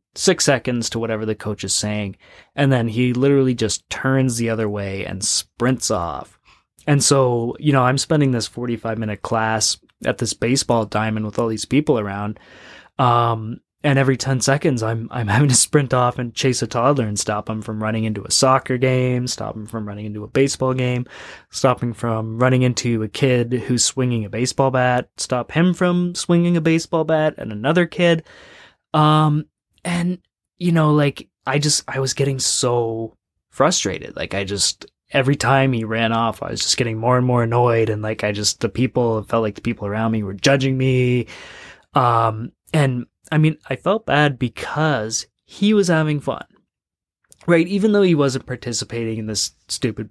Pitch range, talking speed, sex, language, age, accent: 110-140 Hz, 185 wpm, male, English, 20-39, American